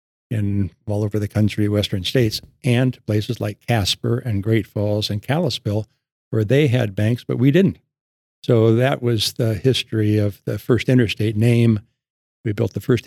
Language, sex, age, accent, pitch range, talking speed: English, male, 60-79, American, 105-125 Hz, 170 wpm